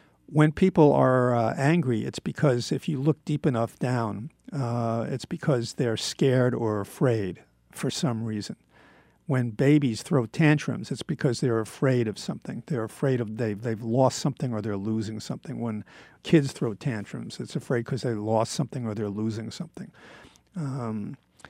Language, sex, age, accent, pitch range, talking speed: English, male, 50-69, American, 115-160 Hz, 165 wpm